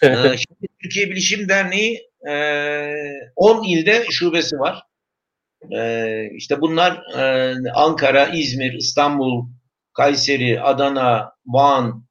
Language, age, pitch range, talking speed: Turkish, 60-79, 130-190 Hz, 80 wpm